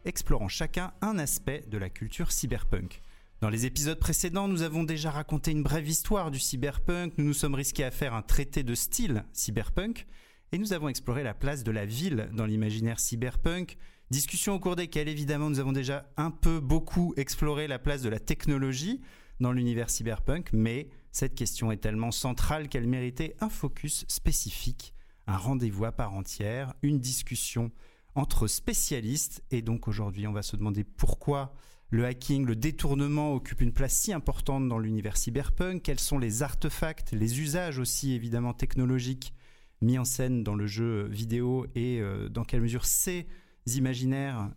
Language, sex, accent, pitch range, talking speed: French, male, French, 115-150 Hz, 170 wpm